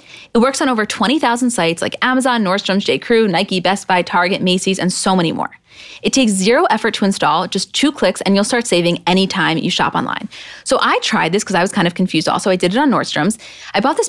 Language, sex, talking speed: English, female, 240 wpm